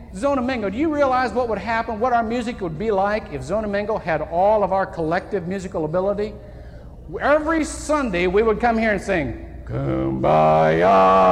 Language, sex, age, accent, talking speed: English, male, 50-69, American, 165 wpm